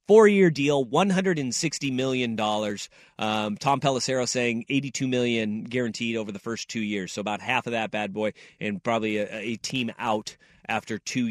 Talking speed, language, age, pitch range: 165 wpm, English, 30-49, 110-135 Hz